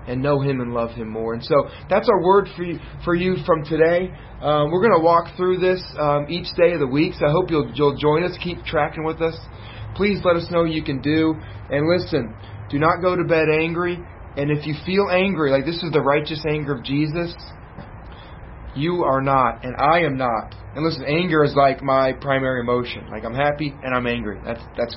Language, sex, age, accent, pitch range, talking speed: English, male, 30-49, American, 110-155 Hz, 225 wpm